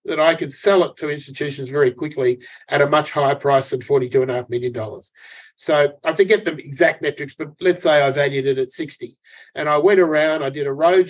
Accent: Australian